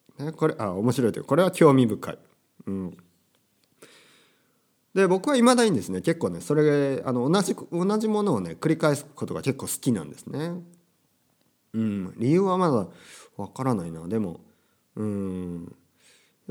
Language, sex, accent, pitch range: Japanese, male, native, 105-175 Hz